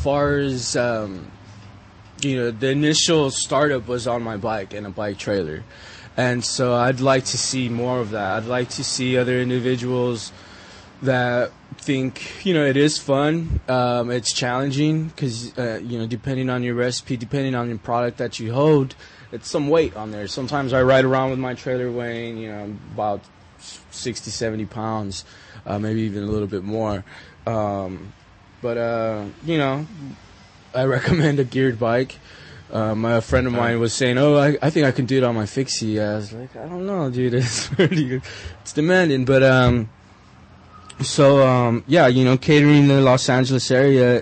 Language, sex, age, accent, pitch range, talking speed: English, male, 20-39, American, 110-130 Hz, 185 wpm